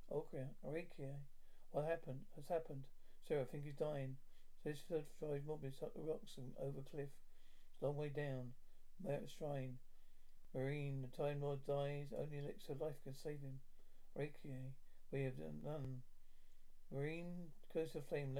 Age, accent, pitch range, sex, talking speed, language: 50-69, British, 135-155 Hz, male, 160 wpm, English